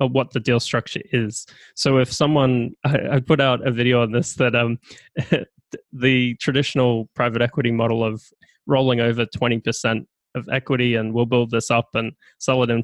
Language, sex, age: English, male, 20-39